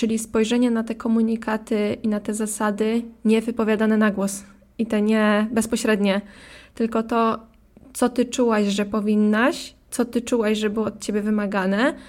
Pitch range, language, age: 210-240 Hz, Polish, 20-39